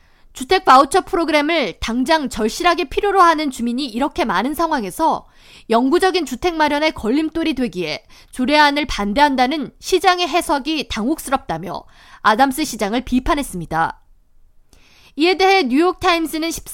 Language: Korean